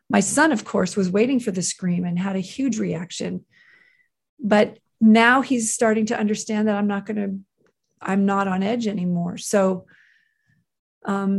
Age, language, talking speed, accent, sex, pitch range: 40-59, English, 170 wpm, American, female, 185-225 Hz